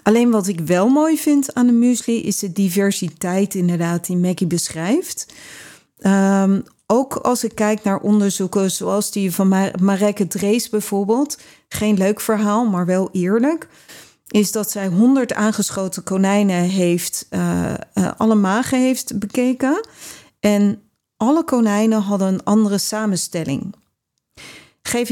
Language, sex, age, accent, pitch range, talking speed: Dutch, female, 40-59, Dutch, 185-220 Hz, 135 wpm